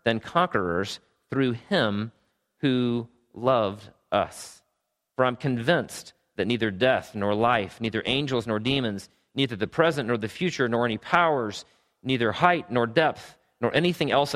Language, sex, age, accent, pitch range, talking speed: English, male, 40-59, American, 105-130 Hz, 145 wpm